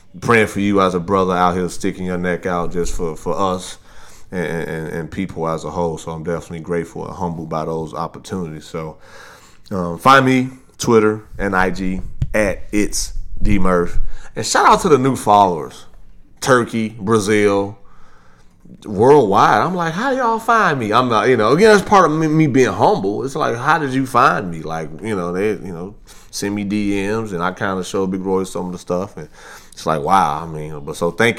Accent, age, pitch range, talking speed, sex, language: American, 30-49, 85-105 Hz, 205 wpm, male, English